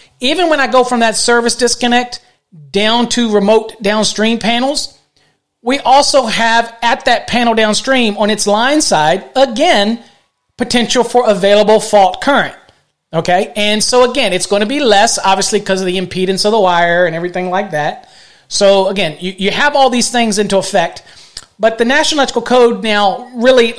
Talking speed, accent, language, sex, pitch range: 170 wpm, American, English, male, 185-235 Hz